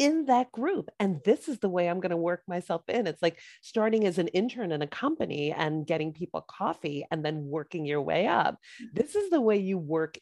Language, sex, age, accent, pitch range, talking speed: English, female, 30-49, American, 150-210 Hz, 230 wpm